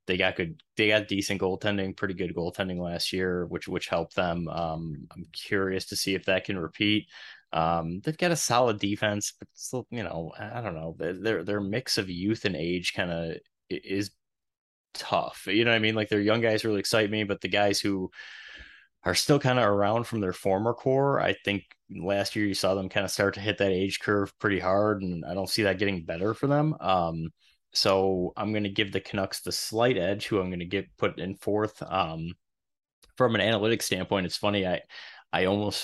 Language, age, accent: English, 20-39, American